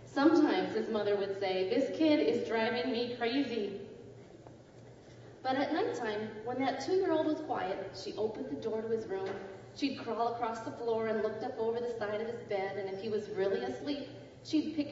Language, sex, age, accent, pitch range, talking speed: English, female, 30-49, American, 210-275 Hz, 195 wpm